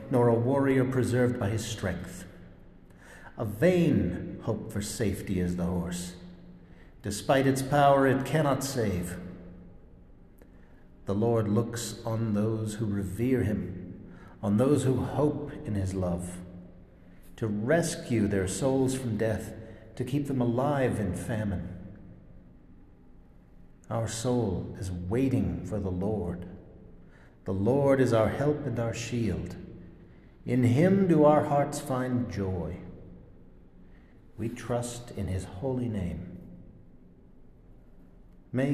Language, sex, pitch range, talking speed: English, male, 90-120 Hz, 120 wpm